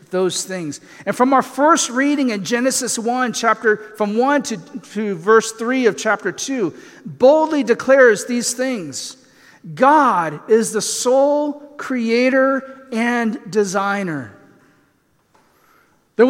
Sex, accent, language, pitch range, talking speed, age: male, American, English, 195-260 Hz, 120 wpm, 40-59